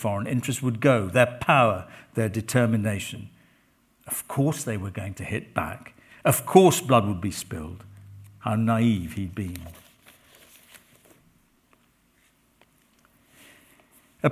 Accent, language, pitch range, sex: British, English, 110-130 Hz, male